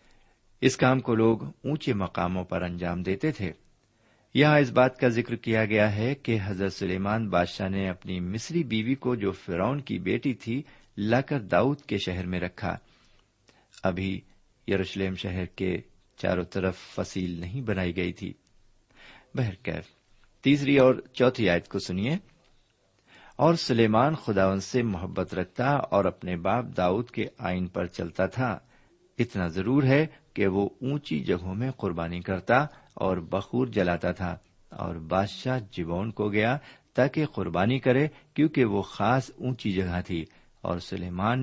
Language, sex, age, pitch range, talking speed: Urdu, male, 50-69, 95-125 Hz, 150 wpm